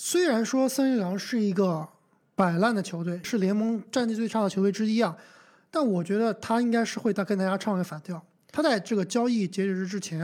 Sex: male